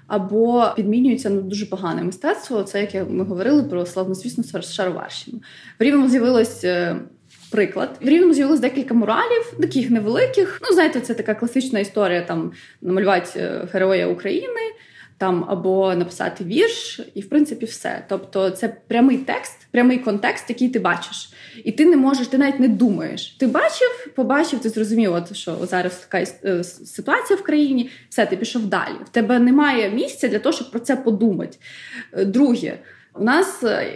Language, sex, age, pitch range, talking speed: Ukrainian, female, 20-39, 205-280 Hz, 155 wpm